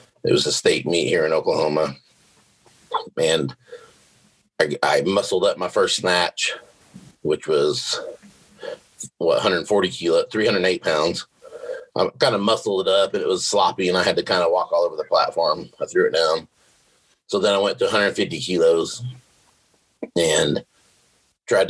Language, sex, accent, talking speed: English, male, American, 160 wpm